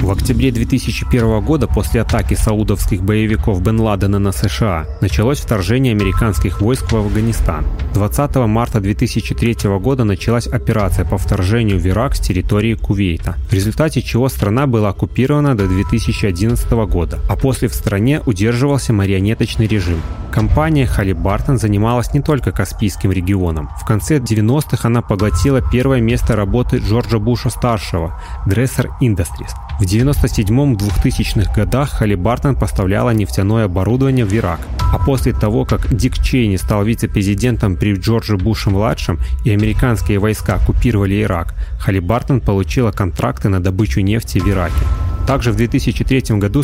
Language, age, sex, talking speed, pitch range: Russian, 30-49, male, 135 wpm, 95-120 Hz